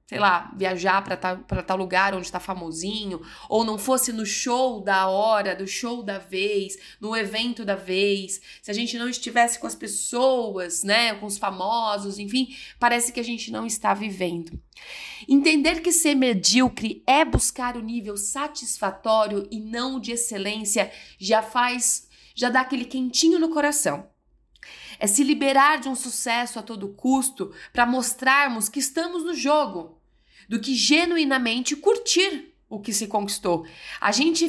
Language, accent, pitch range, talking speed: Portuguese, Brazilian, 200-265 Hz, 165 wpm